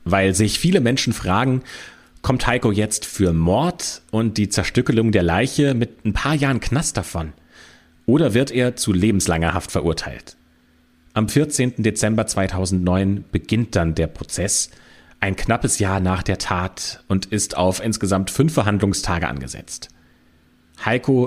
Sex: male